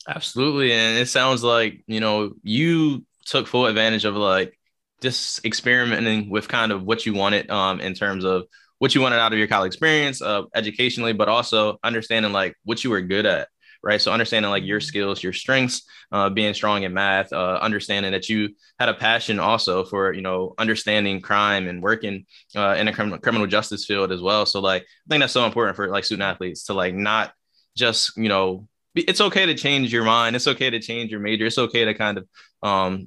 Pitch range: 100-115 Hz